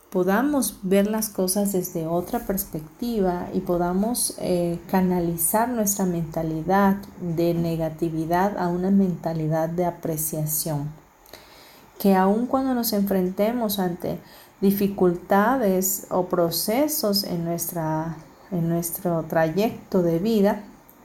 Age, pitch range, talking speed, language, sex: 40-59, 170-205 Hz, 100 wpm, Spanish, female